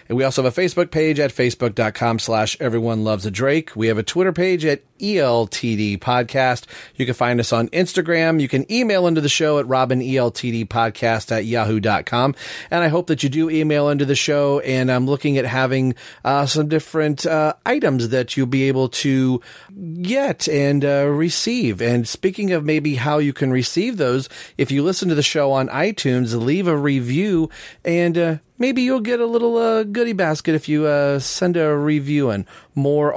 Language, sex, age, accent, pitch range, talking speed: English, male, 40-59, American, 120-165 Hz, 195 wpm